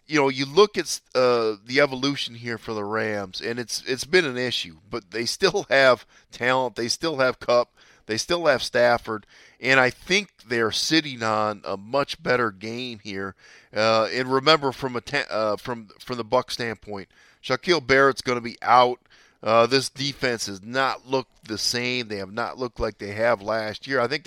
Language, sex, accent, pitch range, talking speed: English, male, American, 110-135 Hz, 200 wpm